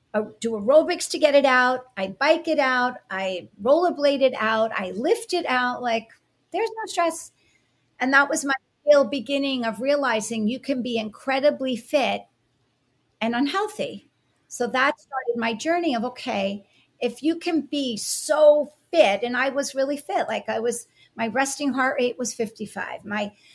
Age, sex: 40-59, female